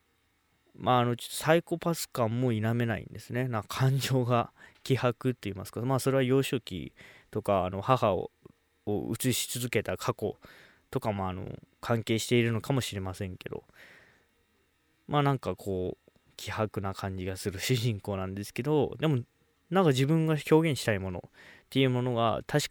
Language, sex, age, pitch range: Japanese, male, 20-39, 100-130 Hz